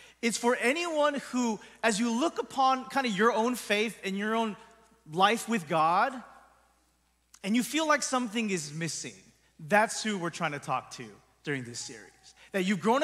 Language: English